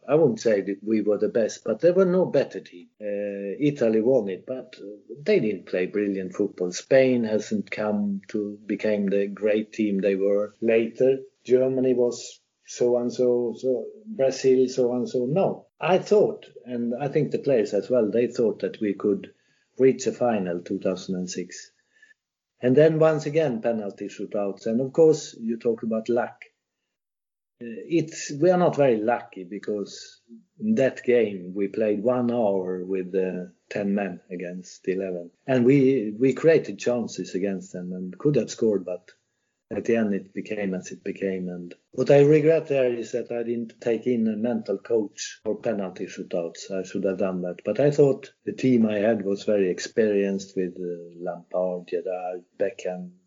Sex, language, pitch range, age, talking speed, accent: male, English, 100-130 Hz, 50-69, 170 wpm, Swedish